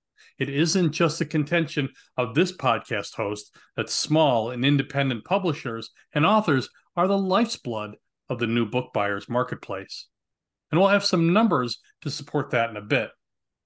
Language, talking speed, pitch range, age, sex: English, 160 wpm, 120-170 Hz, 40-59, male